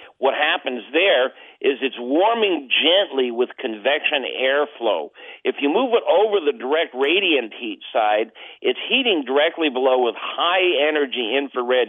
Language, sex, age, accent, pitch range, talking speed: English, male, 50-69, American, 125-175 Hz, 140 wpm